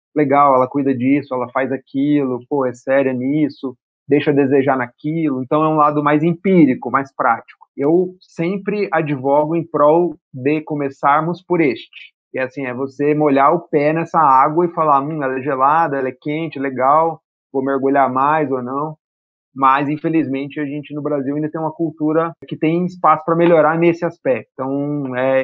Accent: Brazilian